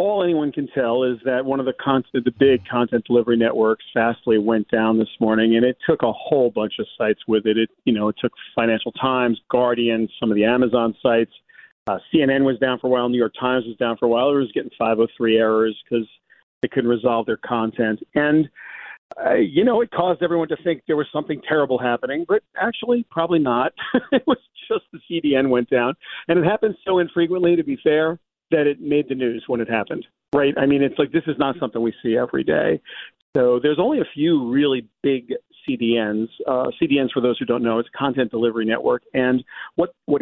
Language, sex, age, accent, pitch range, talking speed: English, male, 40-59, American, 115-145 Hz, 220 wpm